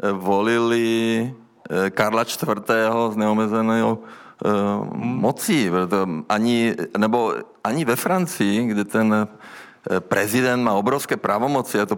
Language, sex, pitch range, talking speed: Czech, male, 105-120 Hz, 95 wpm